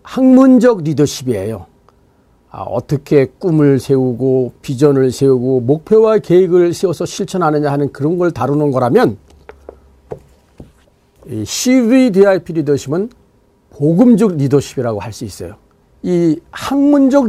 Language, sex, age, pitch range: Korean, male, 50-69, 135-225 Hz